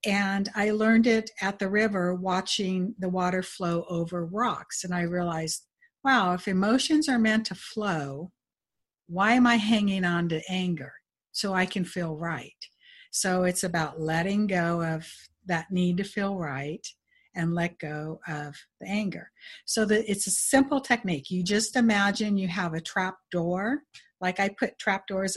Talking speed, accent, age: 165 wpm, American, 60-79